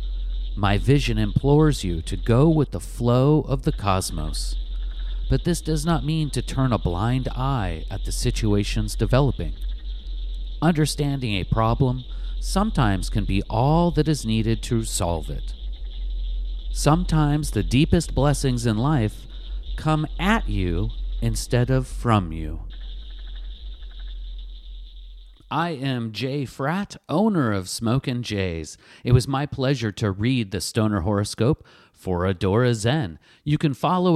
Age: 40-59